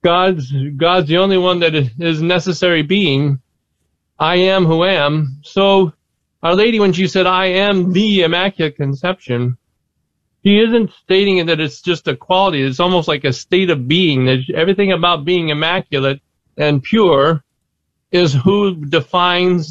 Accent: American